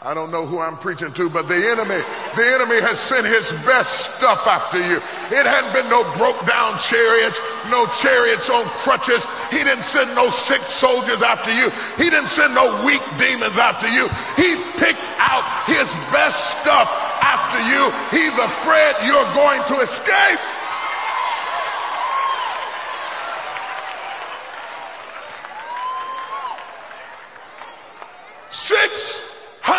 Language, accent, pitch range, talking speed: English, American, 260-355 Hz, 125 wpm